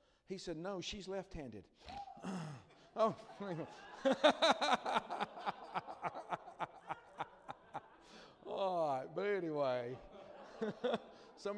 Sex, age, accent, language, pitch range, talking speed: male, 50-69, American, English, 130-185 Hz, 60 wpm